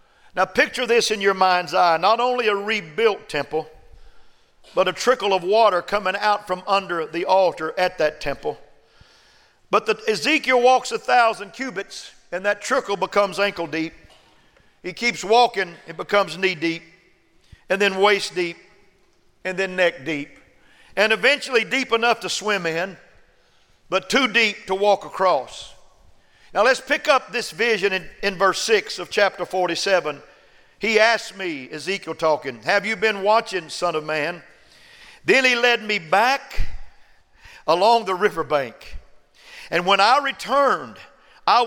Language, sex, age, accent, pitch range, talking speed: English, male, 50-69, American, 185-245 Hz, 150 wpm